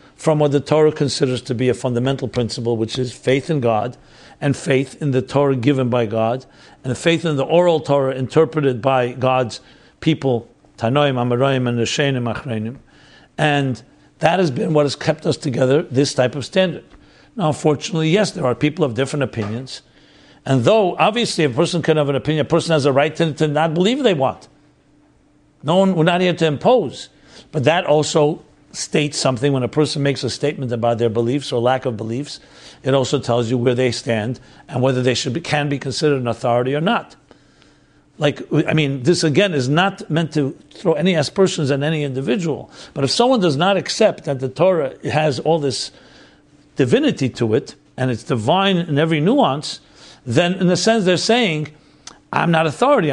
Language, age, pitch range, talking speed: English, 60-79, 130-160 Hz, 185 wpm